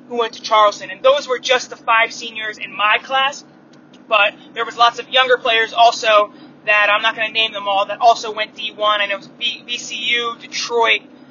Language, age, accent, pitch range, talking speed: English, 20-39, American, 220-270 Hz, 210 wpm